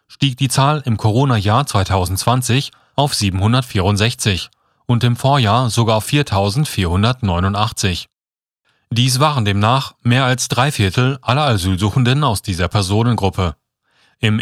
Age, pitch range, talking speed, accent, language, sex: 30-49, 100-130 Hz, 110 wpm, German, German, male